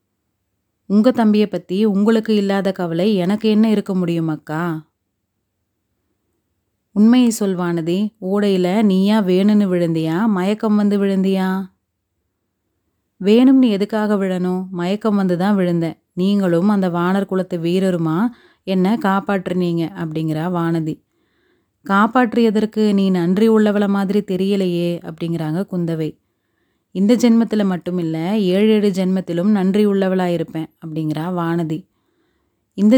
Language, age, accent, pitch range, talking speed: Tamil, 30-49, native, 170-205 Hz, 100 wpm